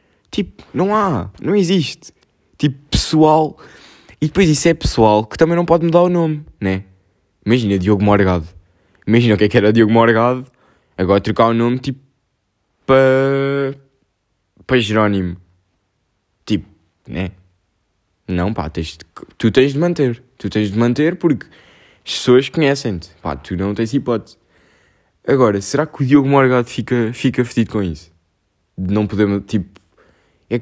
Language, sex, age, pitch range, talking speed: Portuguese, male, 20-39, 100-145 Hz, 145 wpm